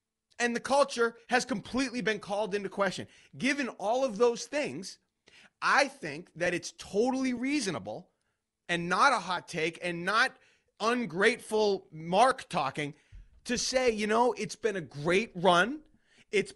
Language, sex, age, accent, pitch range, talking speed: English, male, 30-49, American, 185-260 Hz, 145 wpm